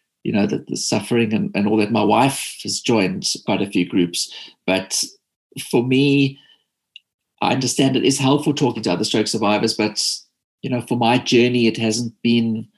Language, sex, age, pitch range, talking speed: English, male, 50-69, 115-135 Hz, 185 wpm